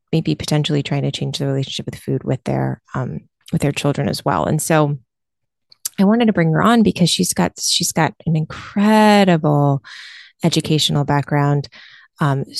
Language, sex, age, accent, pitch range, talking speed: English, female, 20-39, American, 140-170 Hz, 165 wpm